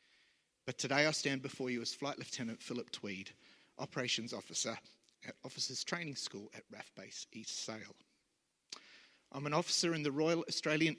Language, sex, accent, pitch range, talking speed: English, male, Australian, 125-150 Hz, 160 wpm